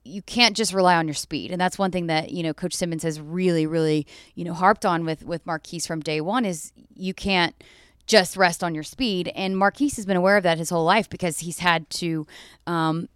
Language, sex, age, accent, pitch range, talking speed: English, female, 20-39, American, 170-195 Hz, 235 wpm